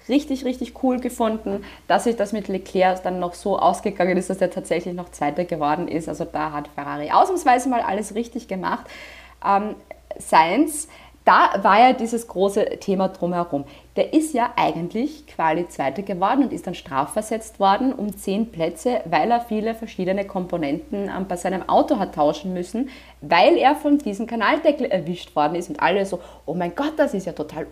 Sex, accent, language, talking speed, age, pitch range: female, German, German, 180 wpm, 20-39, 180-255 Hz